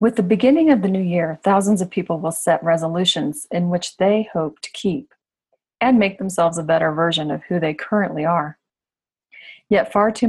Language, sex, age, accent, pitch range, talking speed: English, female, 30-49, American, 165-215 Hz, 190 wpm